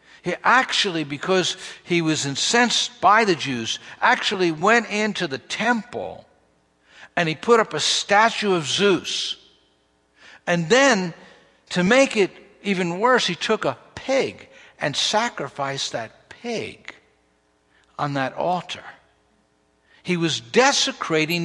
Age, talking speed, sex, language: 60-79, 120 wpm, male, English